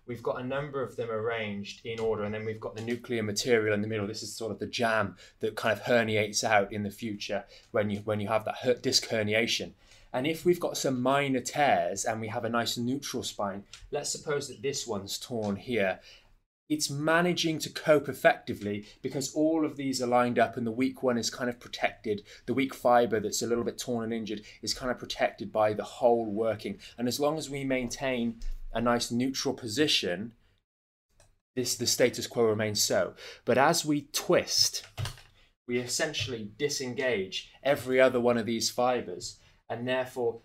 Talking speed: 195 wpm